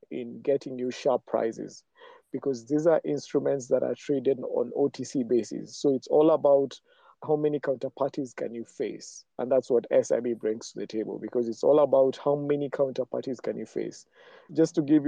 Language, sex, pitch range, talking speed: English, male, 125-155 Hz, 185 wpm